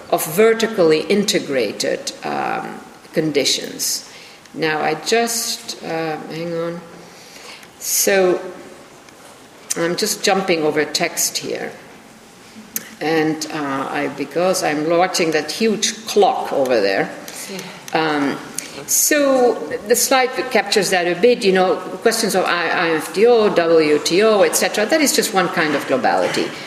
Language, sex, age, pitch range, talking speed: German, female, 50-69, 160-235 Hz, 115 wpm